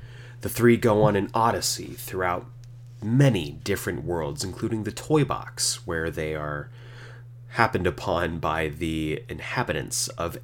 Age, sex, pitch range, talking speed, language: 30-49, male, 90-120 Hz, 130 wpm, English